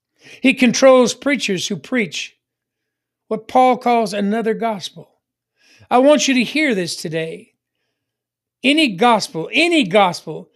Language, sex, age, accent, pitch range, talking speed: English, male, 60-79, American, 185-235 Hz, 120 wpm